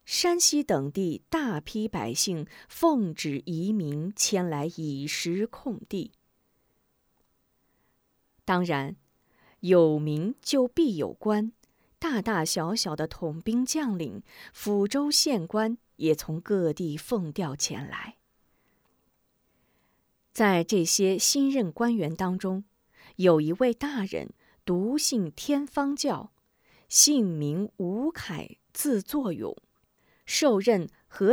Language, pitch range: Chinese, 170-250 Hz